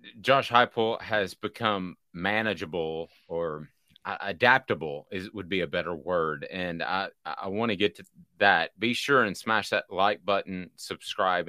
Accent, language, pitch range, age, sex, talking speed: American, English, 85-105 Hz, 30-49, male, 150 wpm